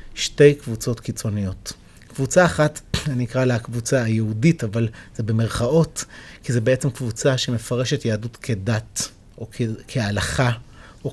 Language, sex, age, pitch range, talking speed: Hebrew, male, 30-49, 115-140 Hz, 130 wpm